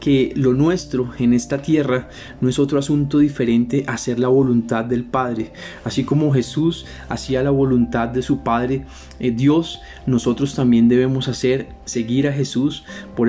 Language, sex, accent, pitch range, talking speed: Spanish, male, Colombian, 120-145 Hz, 165 wpm